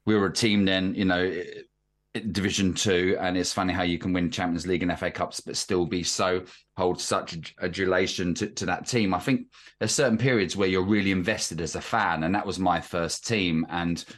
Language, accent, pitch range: English, British, 85-100 Hz